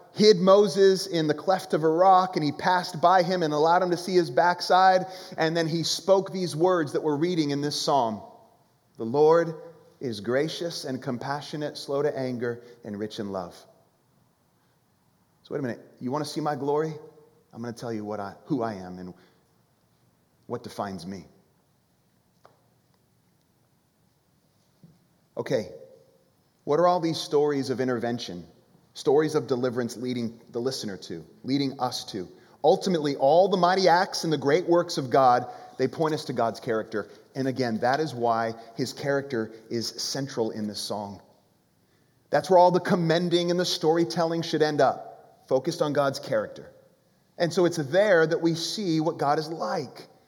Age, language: 30-49, English